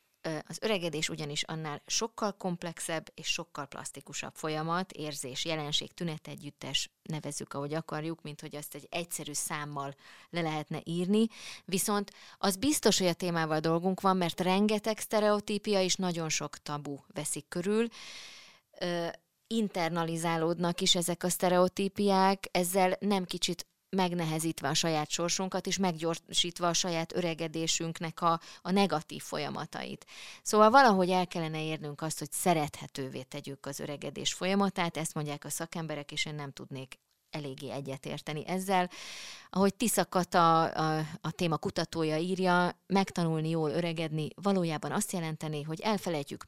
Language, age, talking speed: Hungarian, 20-39, 130 wpm